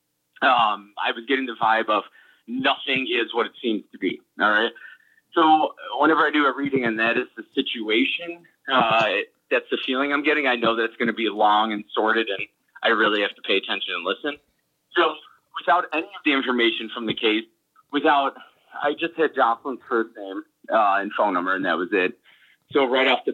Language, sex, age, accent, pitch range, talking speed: English, male, 30-49, American, 115-155 Hz, 210 wpm